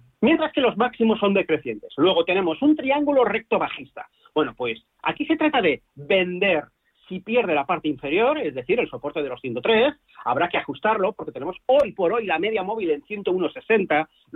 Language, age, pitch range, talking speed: Spanish, 40-59, 185-290 Hz, 180 wpm